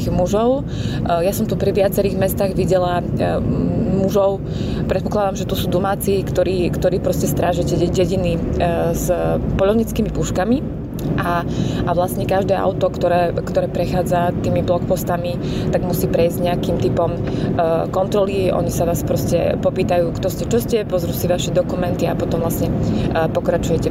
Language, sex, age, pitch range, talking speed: Slovak, female, 20-39, 170-195 Hz, 140 wpm